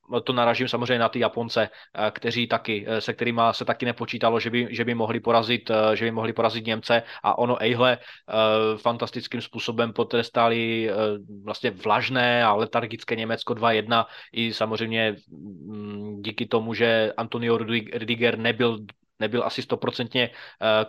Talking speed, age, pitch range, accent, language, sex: 135 wpm, 20-39, 110-125 Hz, native, Czech, male